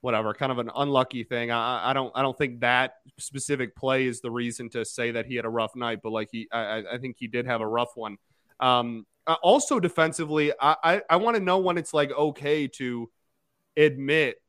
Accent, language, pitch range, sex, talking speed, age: American, English, 125-160 Hz, male, 220 wpm, 30-49